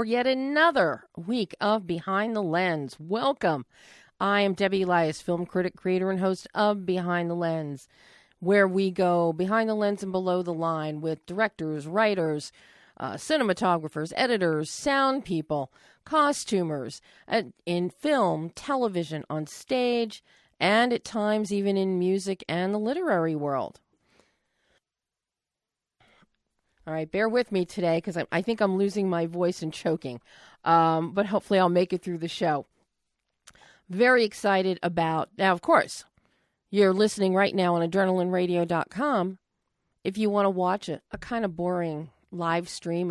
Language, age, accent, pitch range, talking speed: English, 40-59, American, 165-205 Hz, 145 wpm